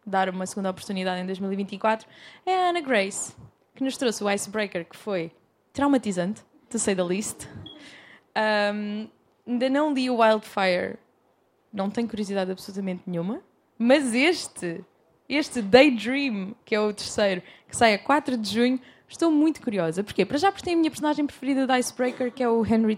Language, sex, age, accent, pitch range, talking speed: Portuguese, female, 20-39, Brazilian, 195-250 Hz, 165 wpm